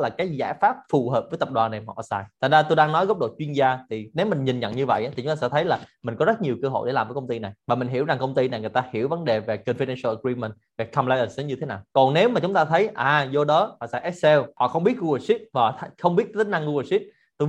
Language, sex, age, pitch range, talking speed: Vietnamese, male, 20-39, 130-170 Hz, 315 wpm